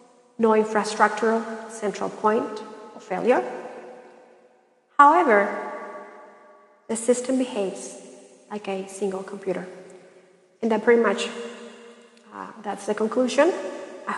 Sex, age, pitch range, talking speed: female, 40-59, 220-260 Hz, 95 wpm